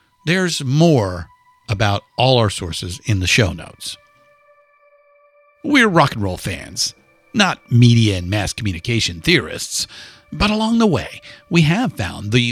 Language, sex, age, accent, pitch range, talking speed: English, male, 50-69, American, 100-170 Hz, 140 wpm